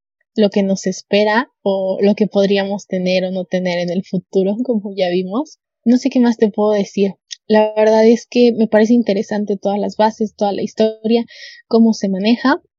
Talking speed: 190 wpm